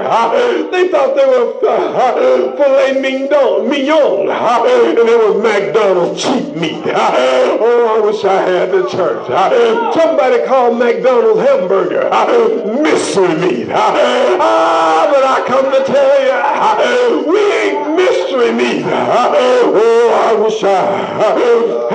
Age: 50-69